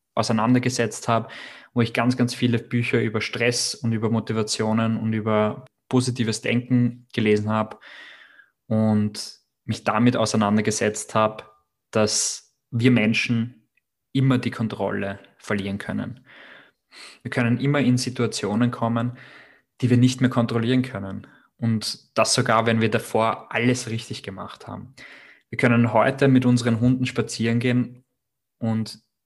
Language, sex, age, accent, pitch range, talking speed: German, male, 20-39, German, 110-125 Hz, 130 wpm